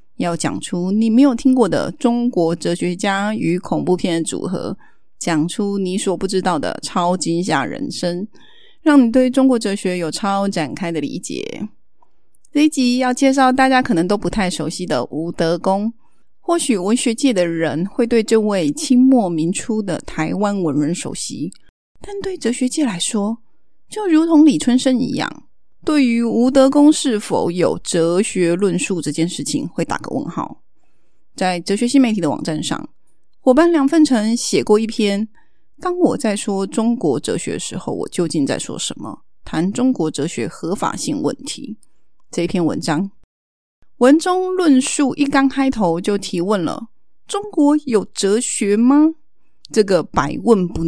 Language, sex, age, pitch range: Chinese, female, 30-49, 180-265 Hz